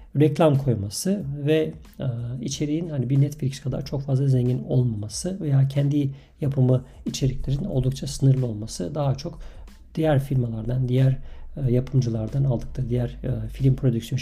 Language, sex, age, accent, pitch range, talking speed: Turkish, male, 50-69, native, 125-150 Hz, 135 wpm